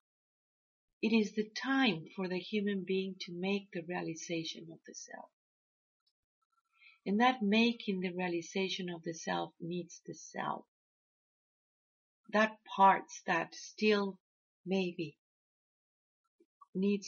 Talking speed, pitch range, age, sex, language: 110 wpm, 180-230 Hz, 40-59, female, English